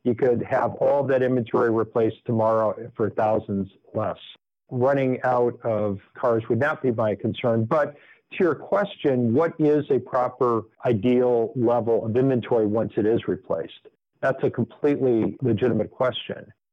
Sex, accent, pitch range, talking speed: male, American, 110-135 Hz, 145 wpm